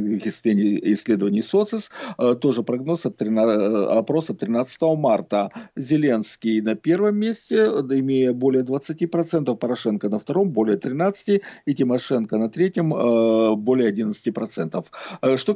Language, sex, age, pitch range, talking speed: Russian, male, 50-69, 115-170 Hz, 105 wpm